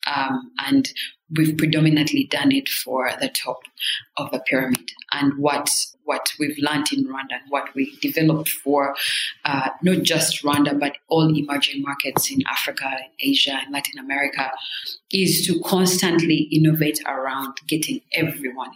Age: 30-49